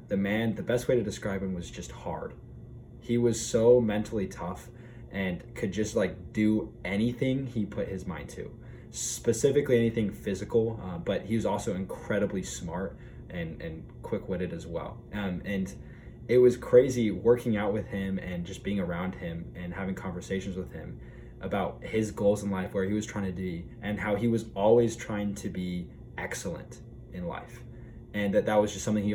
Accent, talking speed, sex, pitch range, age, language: American, 185 wpm, male, 95-115 Hz, 20-39, English